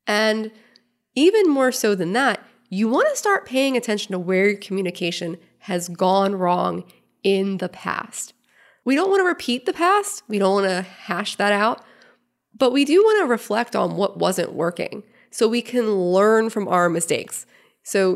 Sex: female